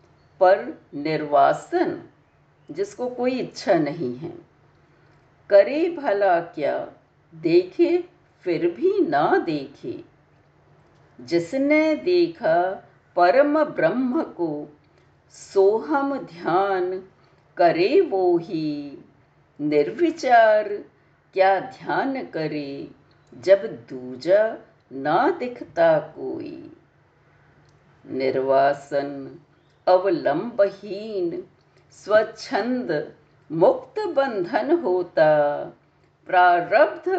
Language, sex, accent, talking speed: Hindi, female, native, 65 wpm